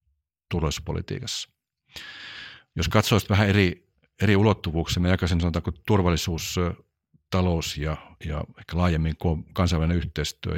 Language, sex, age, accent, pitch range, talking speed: Finnish, male, 50-69, native, 80-90 Hz, 100 wpm